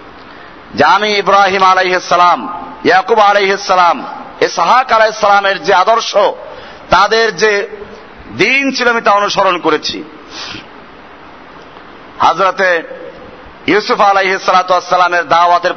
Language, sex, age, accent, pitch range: Bengali, male, 50-69, native, 175-245 Hz